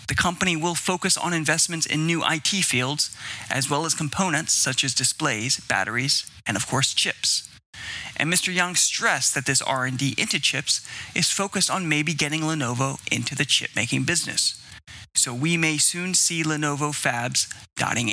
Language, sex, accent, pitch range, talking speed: English, male, American, 130-165 Hz, 160 wpm